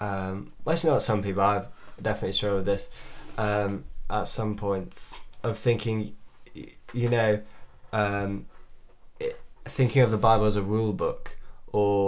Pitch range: 100-120 Hz